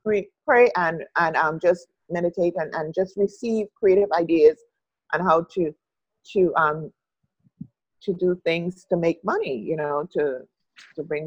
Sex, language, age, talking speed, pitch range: female, English, 30-49, 150 wpm, 160-195 Hz